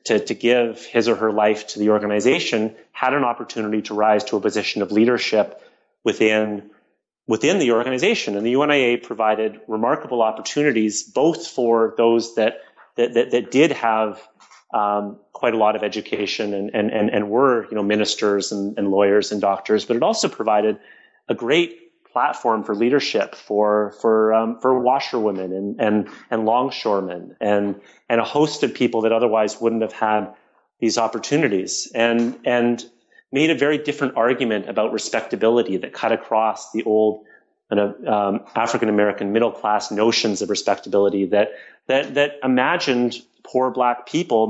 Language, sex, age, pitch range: English, male, 30-49, 105-120 Hz